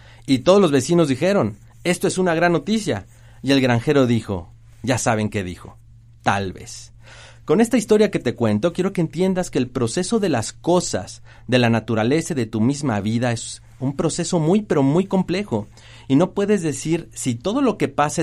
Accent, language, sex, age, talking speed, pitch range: Mexican, Spanish, male, 40-59, 195 wpm, 115-170 Hz